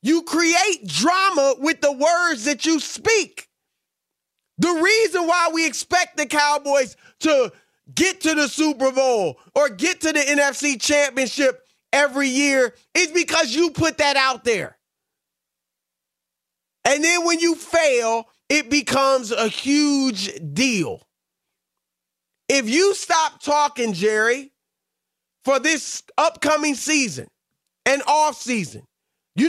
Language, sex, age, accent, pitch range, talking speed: English, male, 30-49, American, 215-300 Hz, 120 wpm